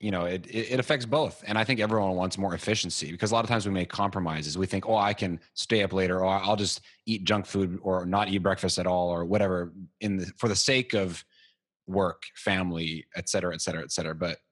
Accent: American